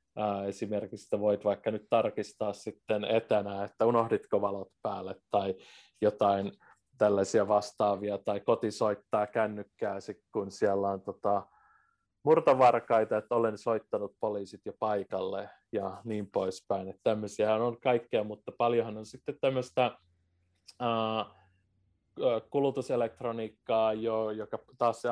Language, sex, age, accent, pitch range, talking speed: Finnish, male, 30-49, native, 100-115 Hz, 110 wpm